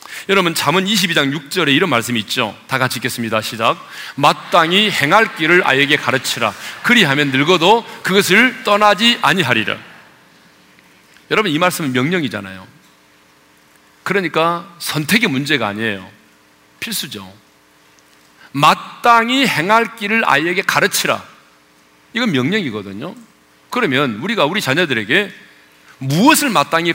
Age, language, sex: 40-59, Korean, male